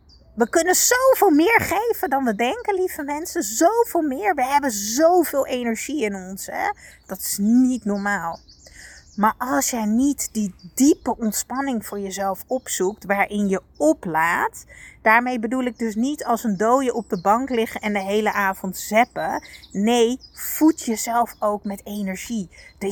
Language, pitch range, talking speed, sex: Dutch, 195-270 Hz, 155 wpm, female